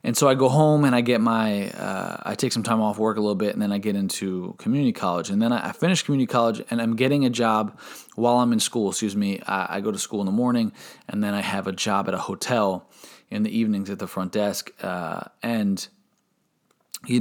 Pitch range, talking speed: 100-125 Hz, 235 wpm